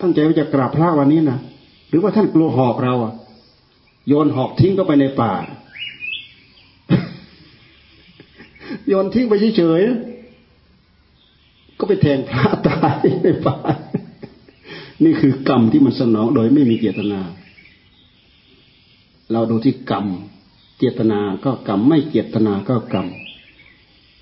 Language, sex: Thai, male